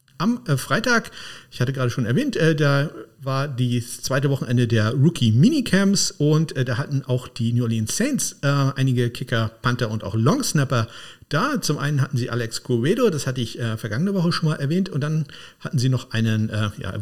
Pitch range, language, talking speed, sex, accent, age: 115-155 Hz, German, 195 wpm, male, German, 50-69